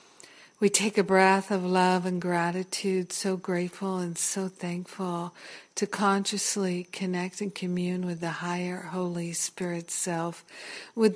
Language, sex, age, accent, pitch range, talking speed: English, female, 50-69, American, 175-190 Hz, 135 wpm